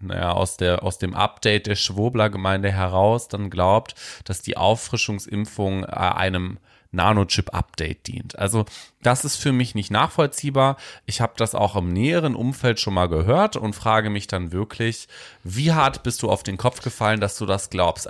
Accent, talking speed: German, 165 wpm